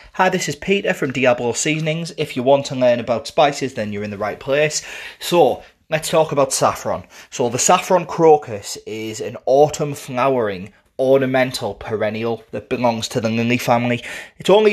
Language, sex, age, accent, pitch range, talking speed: English, male, 30-49, British, 115-160 Hz, 175 wpm